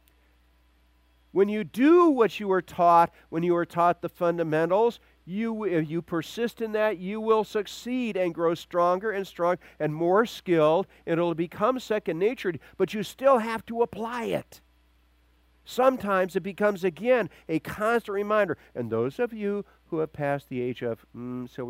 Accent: American